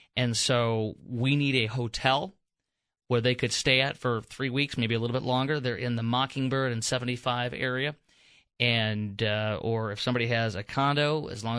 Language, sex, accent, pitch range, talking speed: English, male, American, 115-130 Hz, 185 wpm